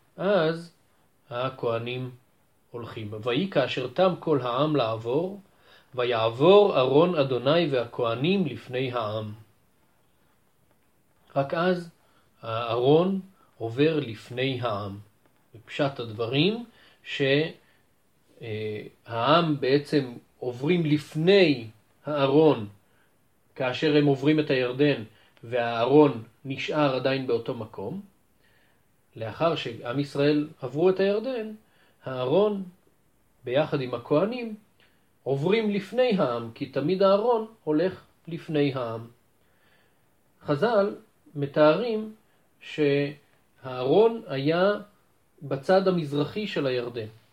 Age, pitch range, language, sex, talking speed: 40-59, 120-160 Hz, Hebrew, male, 80 wpm